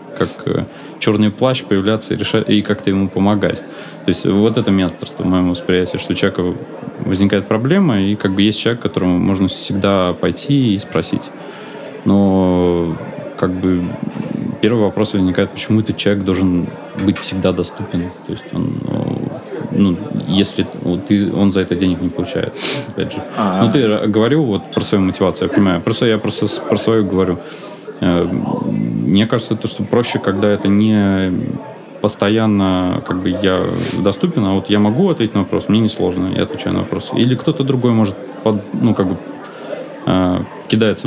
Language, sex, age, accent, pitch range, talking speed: Russian, male, 20-39, native, 95-110 Hz, 165 wpm